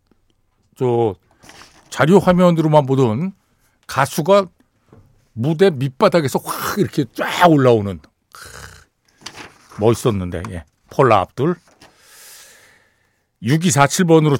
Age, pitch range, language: 60-79, 125-175 Hz, Korean